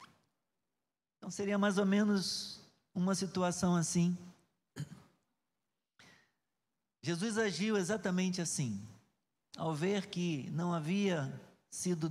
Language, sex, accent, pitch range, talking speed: Portuguese, male, Brazilian, 155-200 Hz, 90 wpm